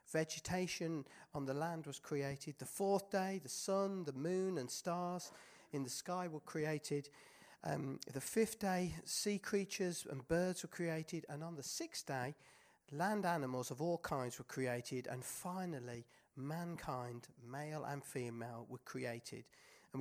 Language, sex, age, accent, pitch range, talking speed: Danish, male, 40-59, British, 130-180 Hz, 155 wpm